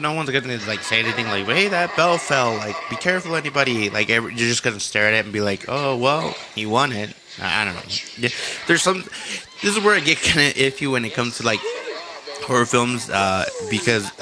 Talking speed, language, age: 220 wpm, English, 20-39